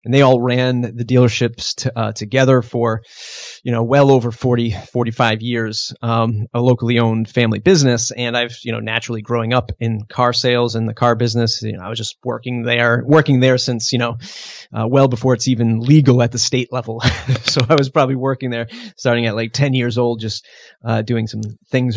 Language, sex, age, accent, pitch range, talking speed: English, male, 30-49, American, 115-130 Hz, 210 wpm